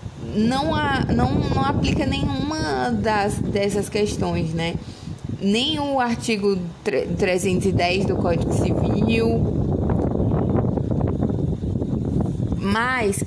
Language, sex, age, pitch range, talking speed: Portuguese, female, 20-39, 195-250 Hz, 70 wpm